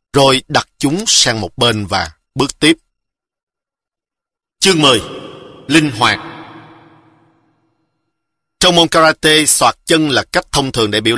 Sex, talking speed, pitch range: male, 130 wpm, 105-150 Hz